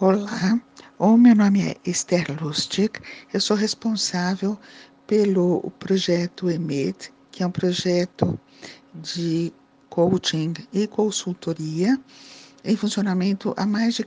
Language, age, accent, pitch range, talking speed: Portuguese, 60-79, Brazilian, 180-235 Hz, 110 wpm